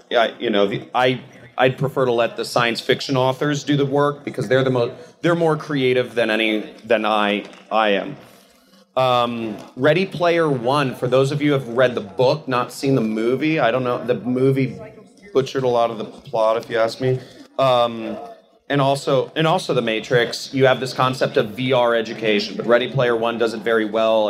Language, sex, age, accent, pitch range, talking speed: English, male, 30-49, American, 115-135 Hz, 205 wpm